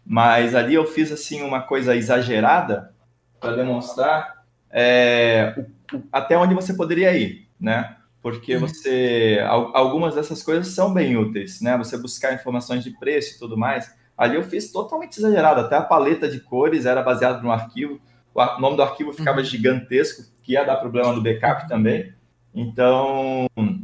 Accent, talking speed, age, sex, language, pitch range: Brazilian, 155 wpm, 20-39, male, Portuguese, 120-150 Hz